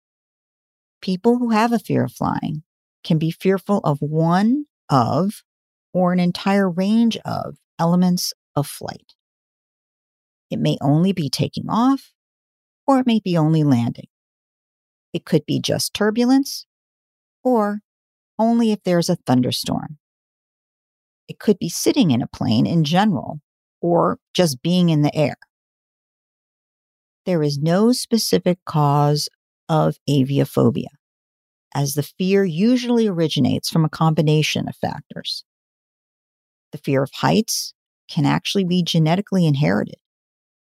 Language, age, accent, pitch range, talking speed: English, 50-69, American, 155-205 Hz, 125 wpm